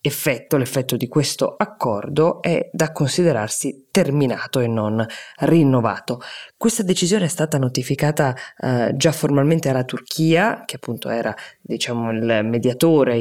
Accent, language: native, Italian